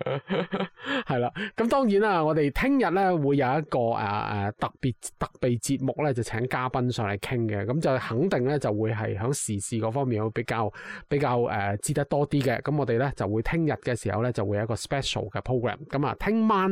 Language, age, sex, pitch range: Chinese, 20-39, male, 125-175 Hz